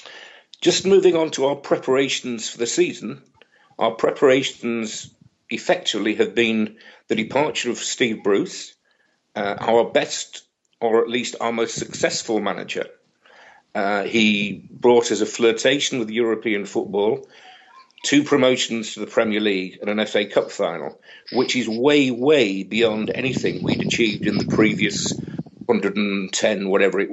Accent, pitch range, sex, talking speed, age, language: British, 115-145 Hz, male, 140 wpm, 50-69, English